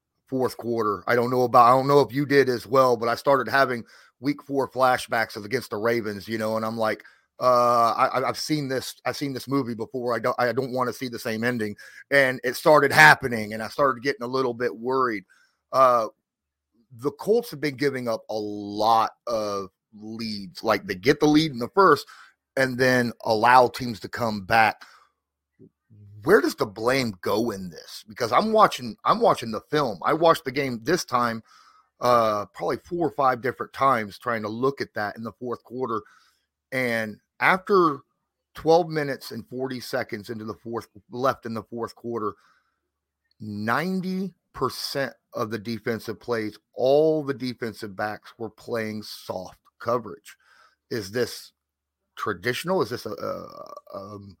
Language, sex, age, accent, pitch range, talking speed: English, male, 30-49, American, 110-135 Hz, 175 wpm